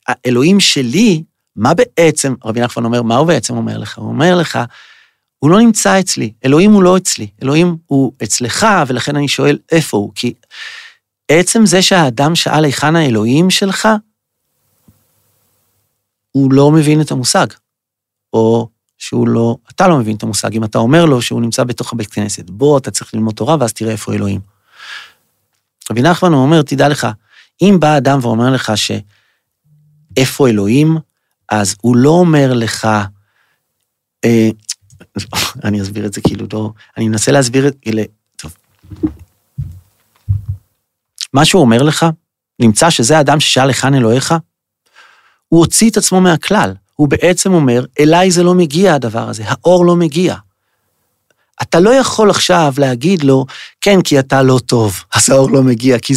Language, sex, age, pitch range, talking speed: Hebrew, male, 40-59, 110-165 Hz, 155 wpm